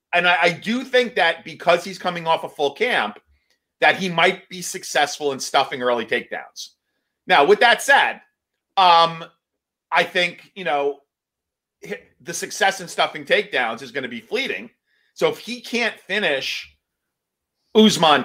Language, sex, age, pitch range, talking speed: English, male, 40-59, 140-180 Hz, 150 wpm